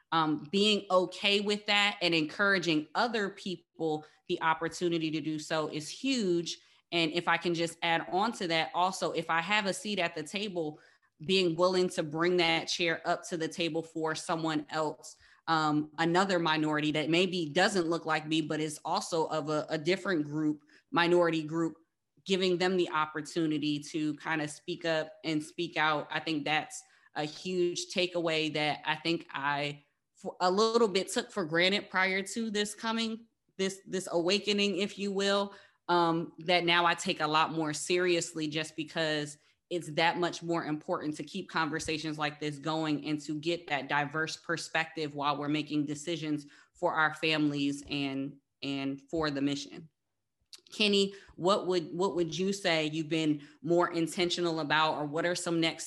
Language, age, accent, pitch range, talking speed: English, 20-39, American, 155-180 Hz, 175 wpm